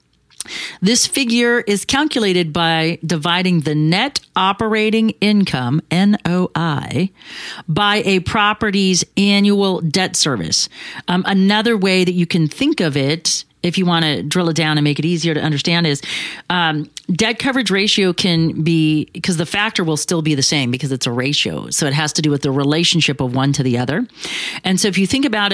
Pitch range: 155-205 Hz